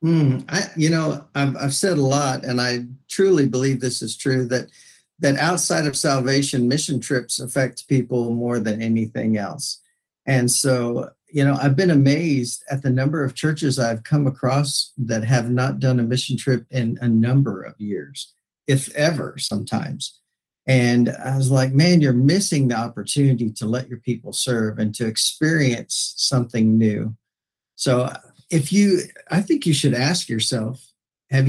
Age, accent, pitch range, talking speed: 50-69, American, 120-150 Hz, 170 wpm